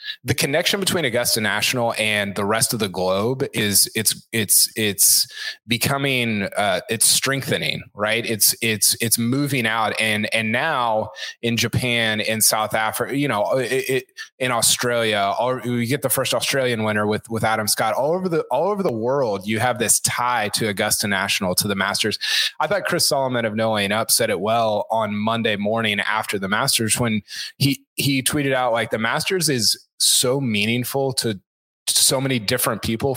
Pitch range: 110-140 Hz